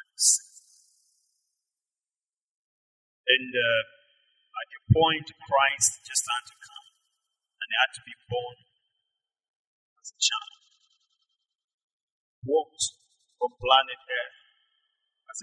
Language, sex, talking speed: English, male, 95 wpm